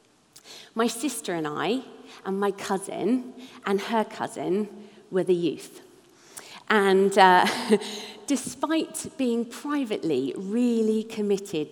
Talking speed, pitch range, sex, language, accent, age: 100 wpm, 175-235 Hz, female, English, British, 40-59